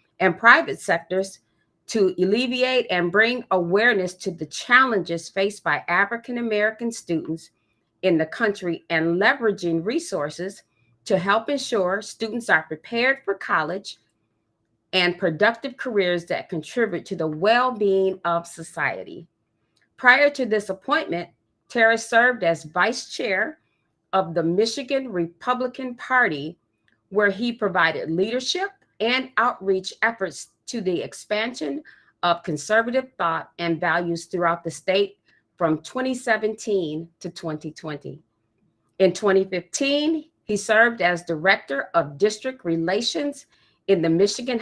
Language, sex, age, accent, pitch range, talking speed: English, female, 40-59, American, 170-235 Hz, 120 wpm